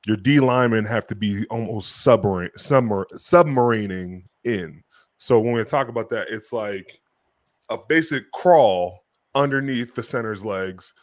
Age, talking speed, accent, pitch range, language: 20-39, 130 wpm, American, 105-135 Hz, English